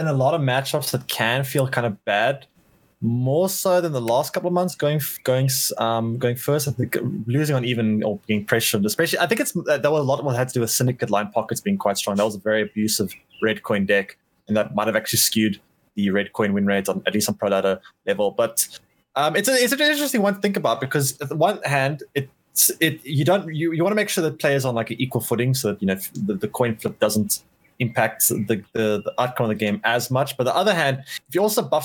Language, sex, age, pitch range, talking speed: English, male, 20-39, 110-145 Hz, 265 wpm